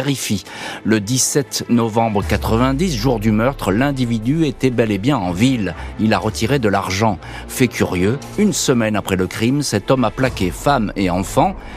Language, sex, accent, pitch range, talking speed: French, male, French, 95-130 Hz, 170 wpm